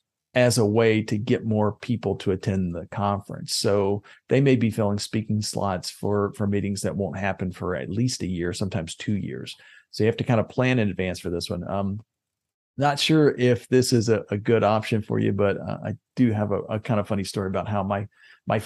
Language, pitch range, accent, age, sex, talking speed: English, 100-120 Hz, American, 40-59, male, 230 wpm